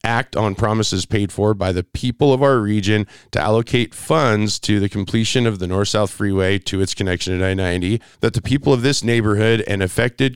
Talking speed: 195 wpm